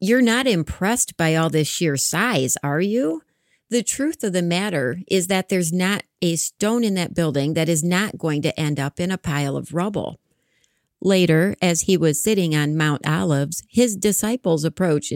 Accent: American